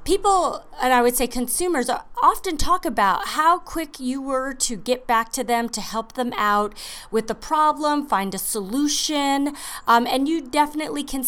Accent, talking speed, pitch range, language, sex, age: American, 175 wpm, 215-290 Hz, English, female, 30-49